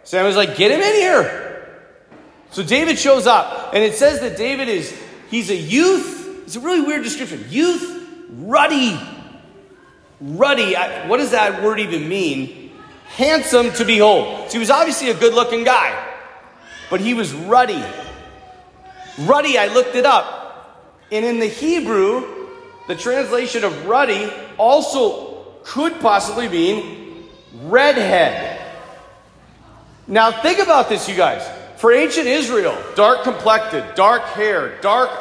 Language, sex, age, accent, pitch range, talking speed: English, male, 30-49, American, 225-370 Hz, 140 wpm